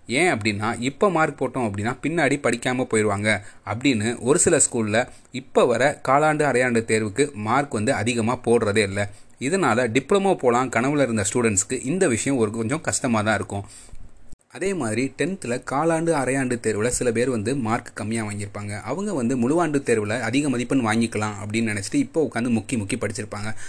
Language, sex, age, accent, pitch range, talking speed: Tamil, male, 30-49, native, 110-130 Hz, 155 wpm